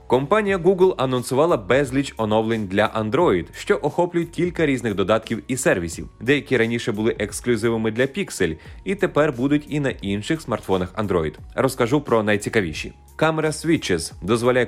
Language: Ukrainian